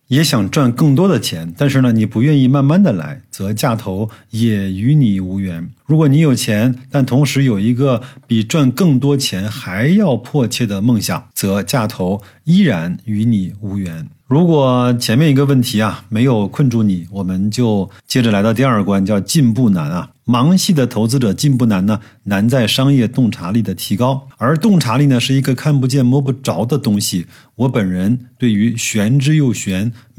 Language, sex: Chinese, male